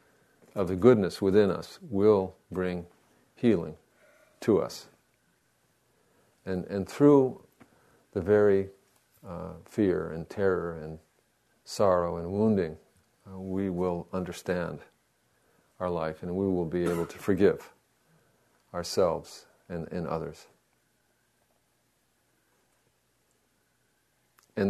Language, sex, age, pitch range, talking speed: English, male, 50-69, 85-100 Hz, 95 wpm